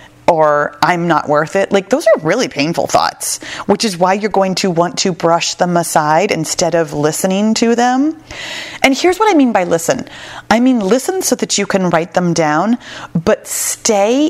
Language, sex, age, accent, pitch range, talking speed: English, female, 30-49, American, 165-205 Hz, 195 wpm